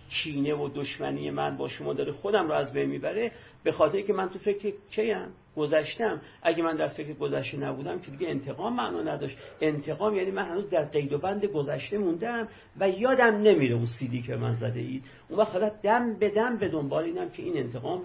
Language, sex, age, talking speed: Persian, male, 50-69, 195 wpm